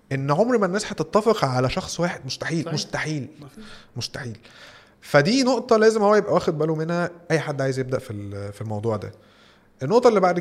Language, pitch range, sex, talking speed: Arabic, 125-165 Hz, male, 180 wpm